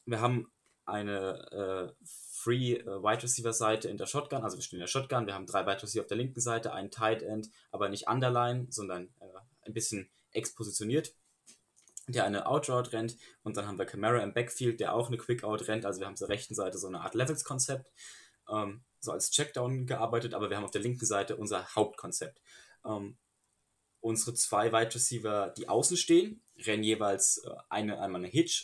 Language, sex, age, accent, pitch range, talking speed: German, male, 20-39, German, 105-125 Hz, 180 wpm